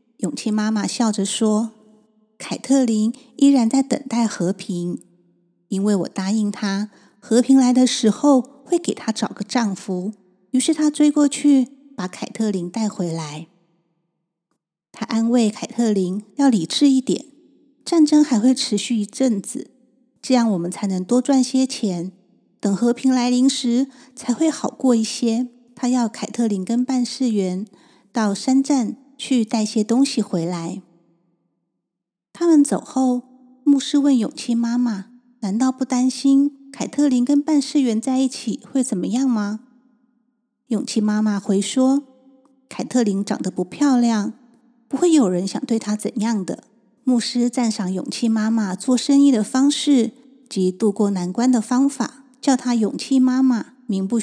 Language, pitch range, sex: Chinese, 210-260 Hz, female